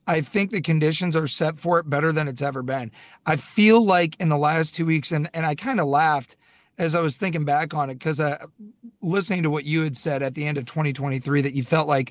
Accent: American